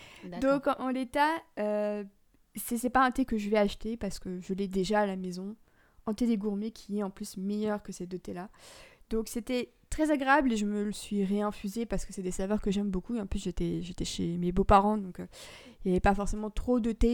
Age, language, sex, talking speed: 20-39, French, female, 245 wpm